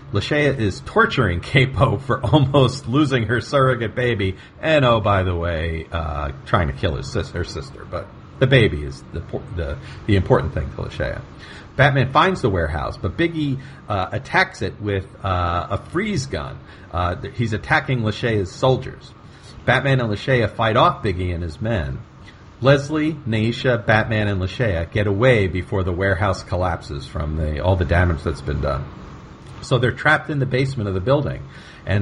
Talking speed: 170 wpm